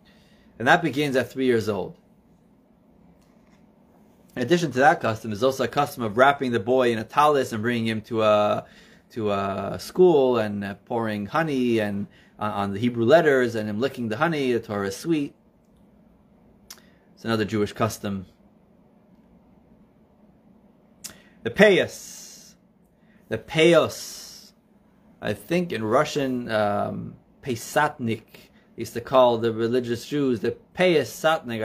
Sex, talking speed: male, 135 wpm